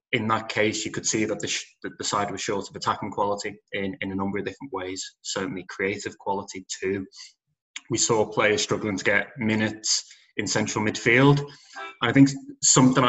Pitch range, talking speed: 100-115 Hz, 180 wpm